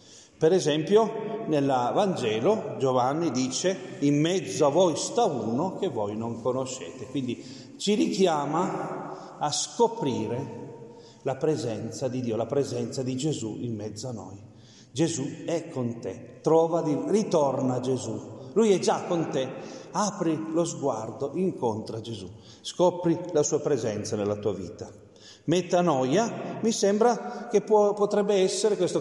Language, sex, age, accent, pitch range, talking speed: Italian, male, 40-59, native, 130-175 Hz, 130 wpm